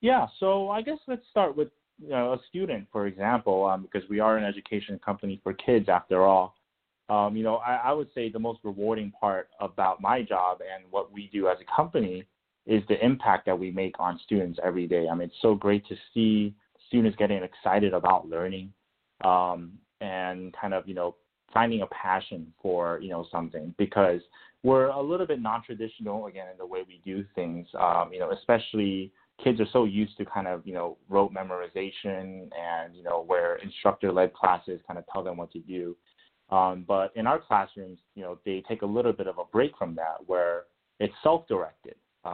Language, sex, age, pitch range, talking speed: English, male, 20-39, 90-110 Hz, 200 wpm